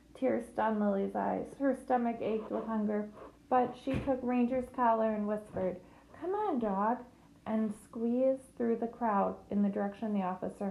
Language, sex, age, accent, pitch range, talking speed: English, female, 20-39, American, 195-240 Hz, 165 wpm